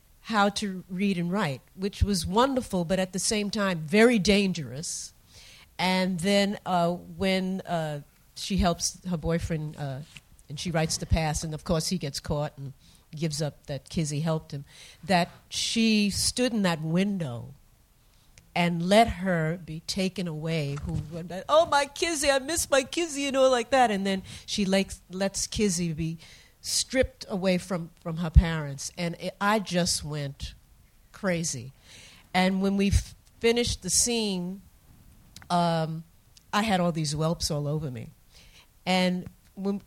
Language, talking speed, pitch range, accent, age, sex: English, 155 wpm, 160-200 Hz, American, 50-69, female